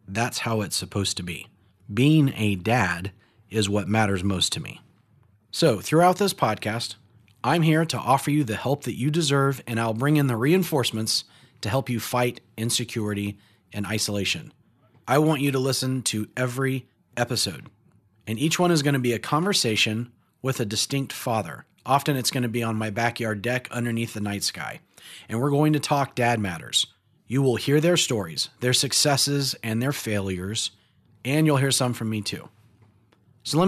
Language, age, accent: English, 30-49, American